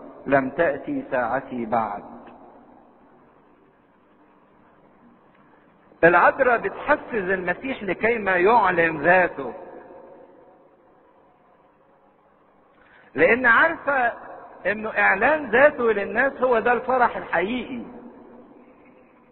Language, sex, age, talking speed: English, male, 50-69, 65 wpm